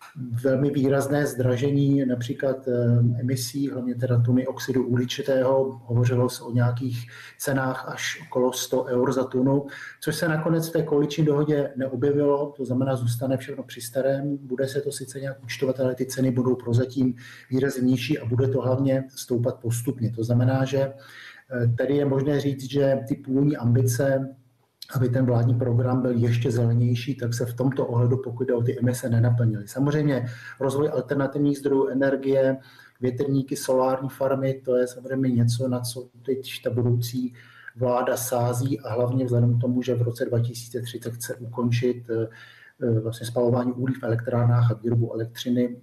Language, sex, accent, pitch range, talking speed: Czech, male, native, 120-135 Hz, 155 wpm